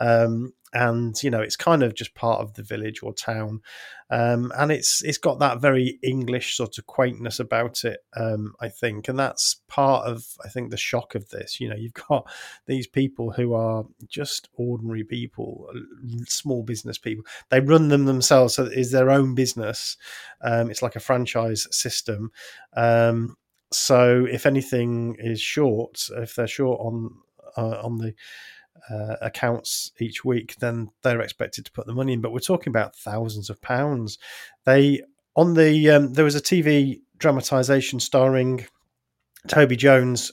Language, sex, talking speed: English, male, 170 wpm